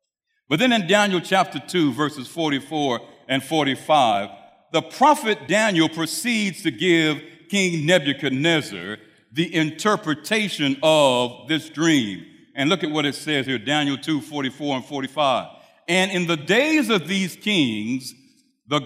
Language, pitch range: English, 145-195 Hz